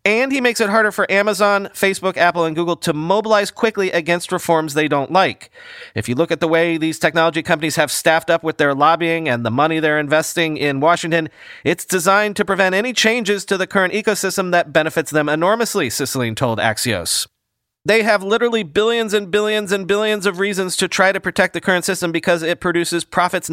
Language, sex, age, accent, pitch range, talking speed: English, male, 30-49, American, 150-195 Hz, 200 wpm